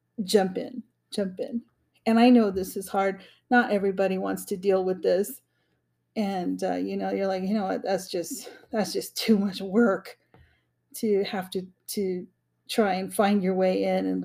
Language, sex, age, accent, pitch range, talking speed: English, female, 40-59, American, 185-235 Hz, 185 wpm